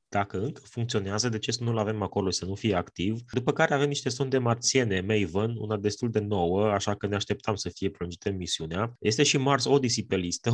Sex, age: male, 20-39